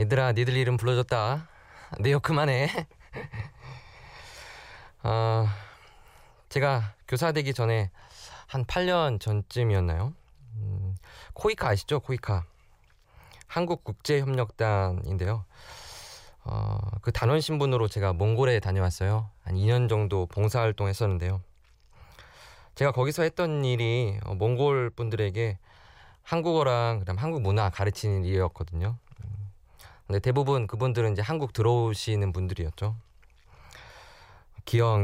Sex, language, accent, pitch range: male, Korean, native, 100-125 Hz